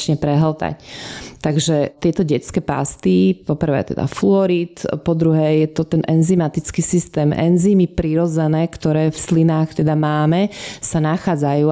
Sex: female